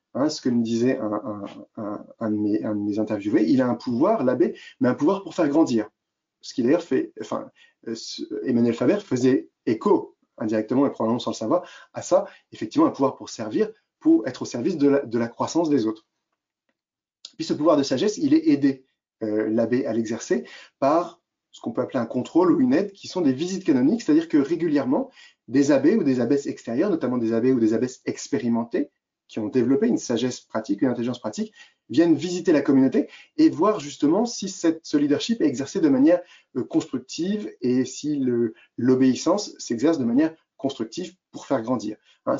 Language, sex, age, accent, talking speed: French, male, 30-49, French, 200 wpm